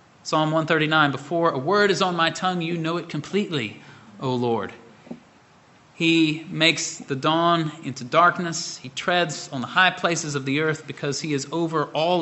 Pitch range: 140-180 Hz